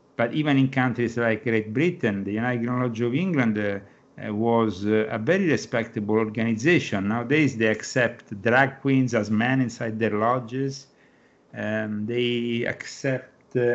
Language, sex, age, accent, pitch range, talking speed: English, male, 50-69, Italian, 110-125 Hz, 145 wpm